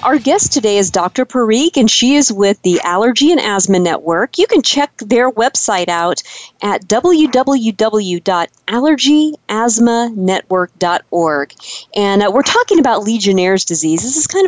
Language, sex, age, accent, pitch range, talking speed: English, female, 40-59, American, 185-240 Hz, 135 wpm